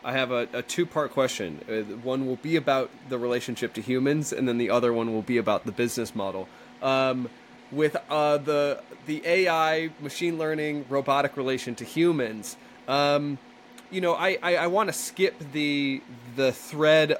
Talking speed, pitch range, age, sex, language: 175 wpm, 130-165 Hz, 20-39, male, English